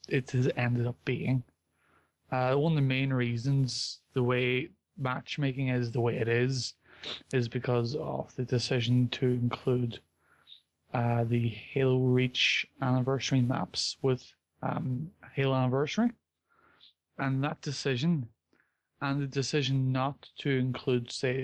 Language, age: English, 20-39